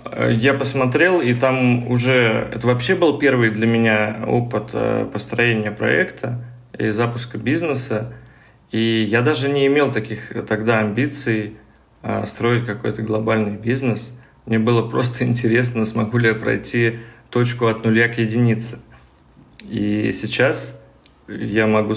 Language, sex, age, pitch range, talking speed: Russian, male, 30-49, 110-120 Hz, 125 wpm